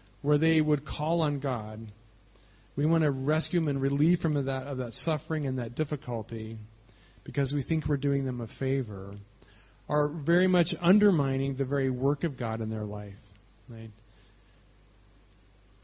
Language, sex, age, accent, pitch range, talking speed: English, male, 40-59, American, 105-140 Hz, 165 wpm